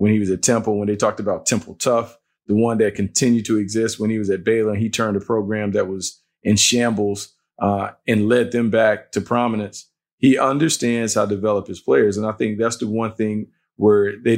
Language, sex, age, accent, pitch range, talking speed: English, male, 40-59, American, 105-120 Hz, 220 wpm